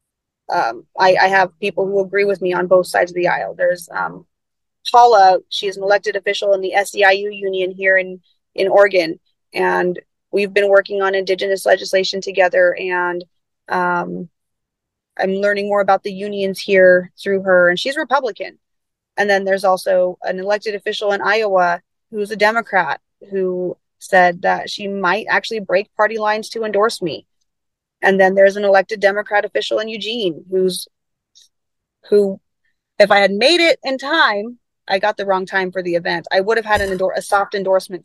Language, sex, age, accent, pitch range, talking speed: English, female, 30-49, American, 185-220 Hz, 175 wpm